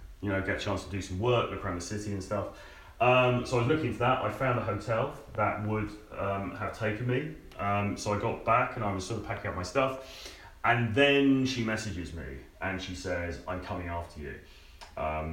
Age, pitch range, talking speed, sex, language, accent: 30-49, 90-110 Hz, 230 wpm, male, English, British